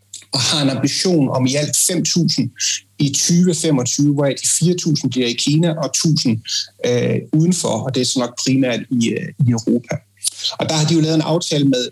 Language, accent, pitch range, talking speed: Danish, native, 125-160 Hz, 180 wpm